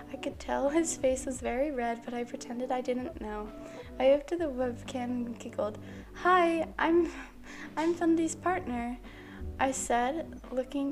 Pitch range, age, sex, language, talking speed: 240-280 Hz, 10-29, female, English, 155 wpm